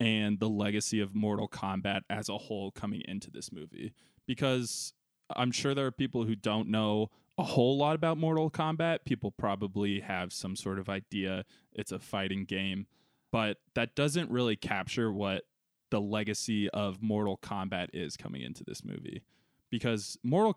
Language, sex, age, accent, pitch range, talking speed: English, male, 20-39, American, 105-125 Hz, 165 wpm